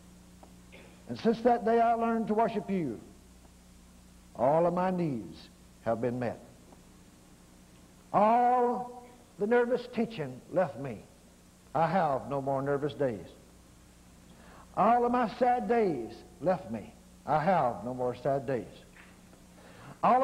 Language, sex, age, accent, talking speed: English, male, 60-79, American, 125 wpm